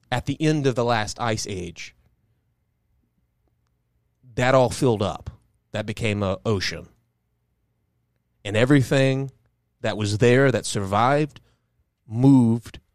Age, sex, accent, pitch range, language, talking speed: 30-49, male, American, 95-120 Hz, English, 110 wpm